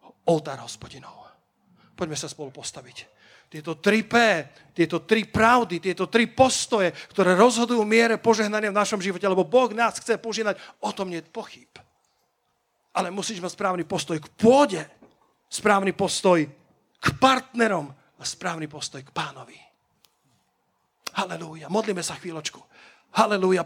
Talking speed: 135 wpm